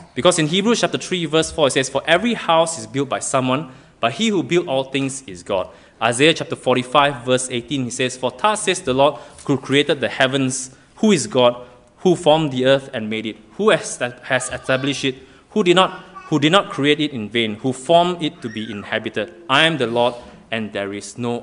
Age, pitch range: 20-39, 125-175 Hz